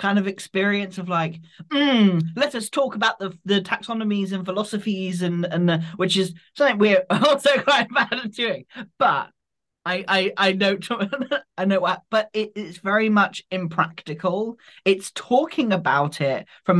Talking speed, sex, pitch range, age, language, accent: 155 wpm, male, 160-205 Hz, 20-39, English, British